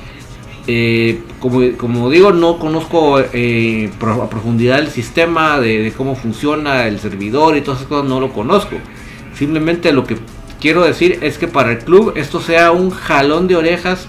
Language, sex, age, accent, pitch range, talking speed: Spanish, male, 50-69, Mexican, 125-165 Hz, 170 wpm